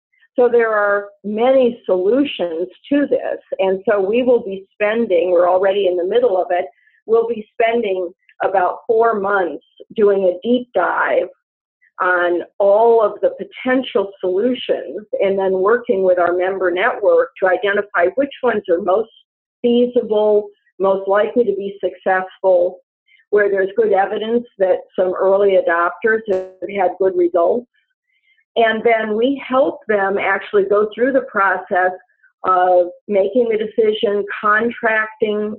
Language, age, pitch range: English, 50-69, 185-245 Hz